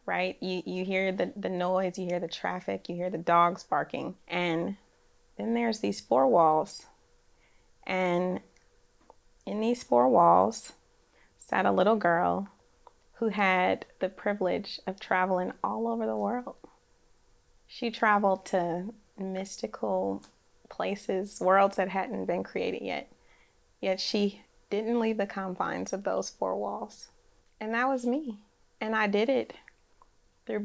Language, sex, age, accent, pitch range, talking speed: English, female, 20-39, American, 185-215 Hz, 140 wpm